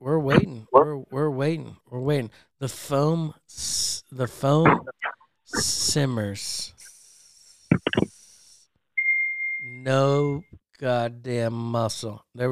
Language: English